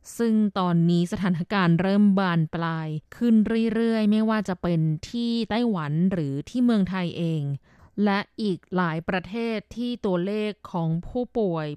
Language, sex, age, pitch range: Thai, female, 20-39, 180-230 Hz